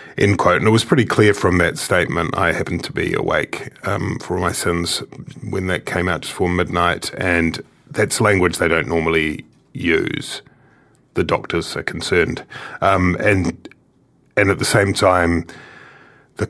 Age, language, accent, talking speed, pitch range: 30-49, English, British, 165 wpm, 85-110 Hz